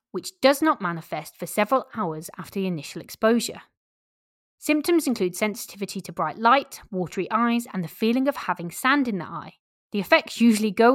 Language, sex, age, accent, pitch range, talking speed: English, female, 20-39, British, 175-250 Hz, 175 wpm